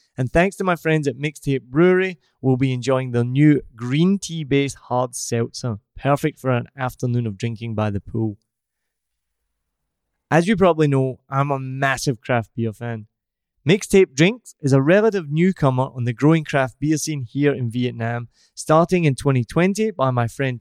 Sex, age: male, 20-39